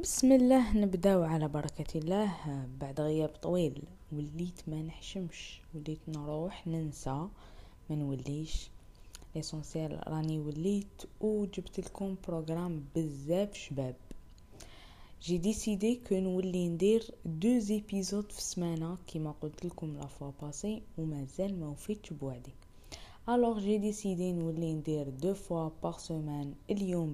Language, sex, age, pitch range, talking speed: Arabic, female, 20-39, 150-210 Hz, 125 wpm